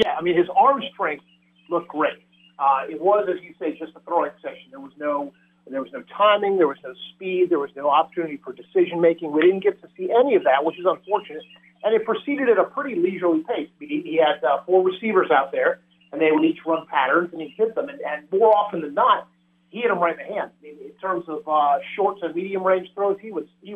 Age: 40-59